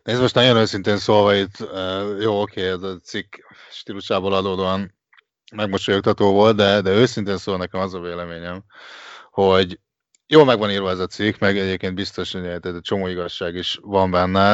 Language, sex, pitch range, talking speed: Hungarian, male, 85-100 Hz, 170 wpm